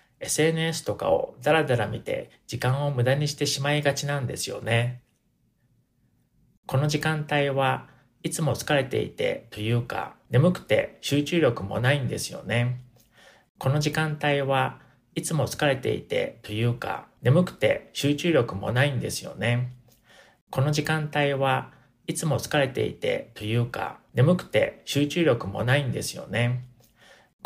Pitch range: 120-150 Hz